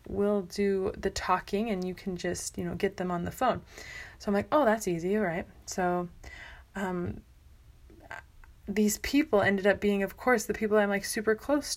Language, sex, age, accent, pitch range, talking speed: English, female, 20-39, American, 185-220 Hz, 195 wpm